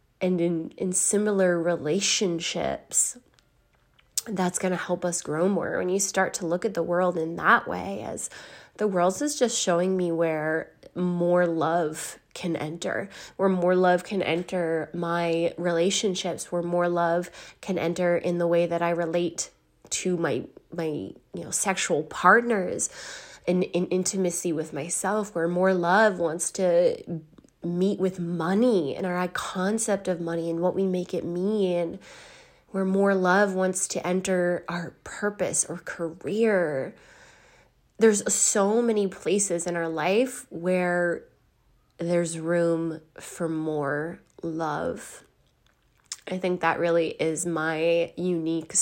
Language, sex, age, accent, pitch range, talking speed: English, female, 20-39, American, 170-190 Hz, 145 wpm